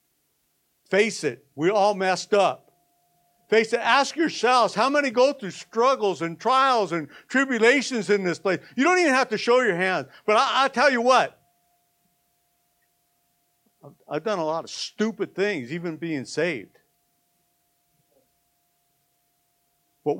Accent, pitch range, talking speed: American, 175-260 Hz, 135 wpm